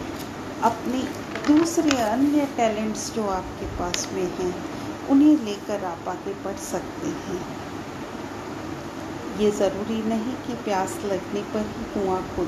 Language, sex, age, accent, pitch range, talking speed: English, female, 40-59, Indian, 225-310 Hz, 120 wpm